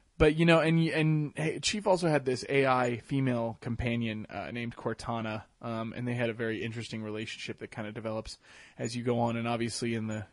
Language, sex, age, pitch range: English, male, 20-39, 110-130 Hz